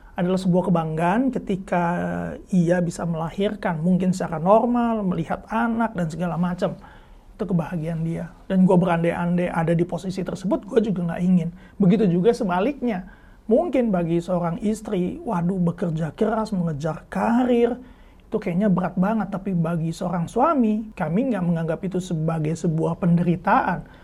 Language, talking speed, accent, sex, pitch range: Indonesian, 140 wpm, native, male, 170-205 Hz